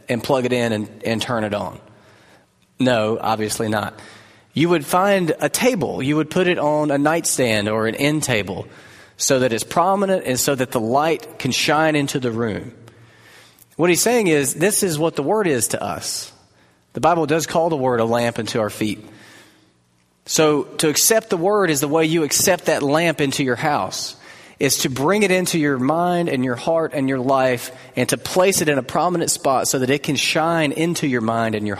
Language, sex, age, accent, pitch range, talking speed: English, male, 30-49, American, 105-150 Hz, 210 wpm